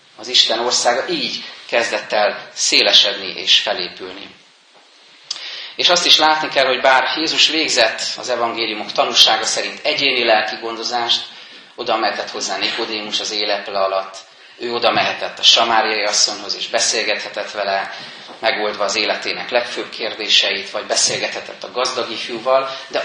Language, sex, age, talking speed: Hungarian, male, 30-49, 135 wpm